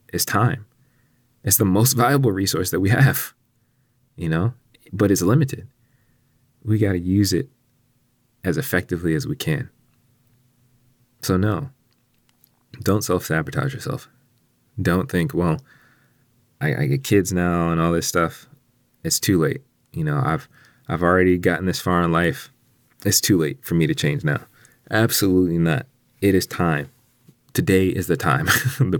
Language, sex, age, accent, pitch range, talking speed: English, male, 30-49, American, 90-130 Hz, 150 wpm